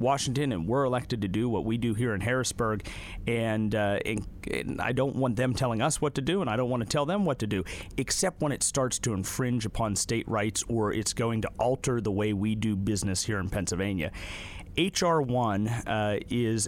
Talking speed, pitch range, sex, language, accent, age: 220 wpm, 100-125 Hz, male, English, American, 40-59